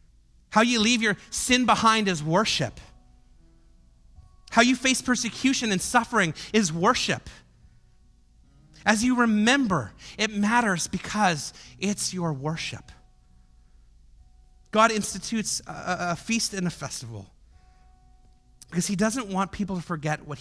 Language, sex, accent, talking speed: English, male, American, 120 wpm